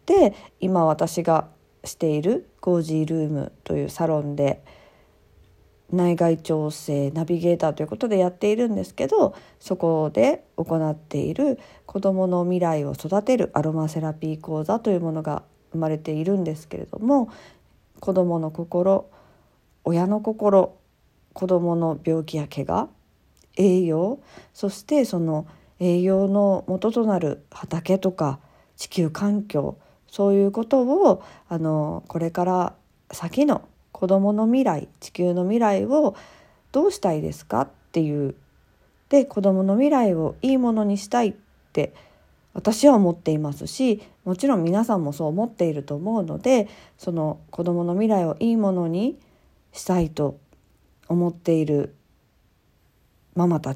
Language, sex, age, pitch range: Japanese, female, 50-69, 155-205 Hz